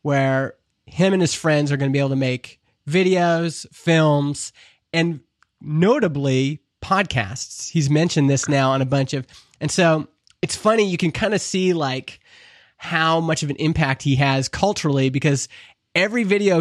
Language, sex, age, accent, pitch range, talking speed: English, male, 20-39, American, 140-180 Hz, 165 wpm